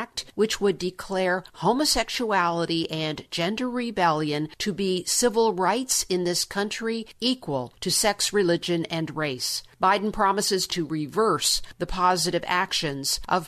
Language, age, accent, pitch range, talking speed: English, 50-69, American, 170-210 Hz, 125 wpm